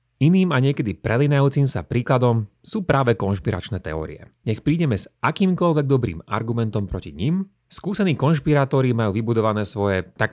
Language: Slovak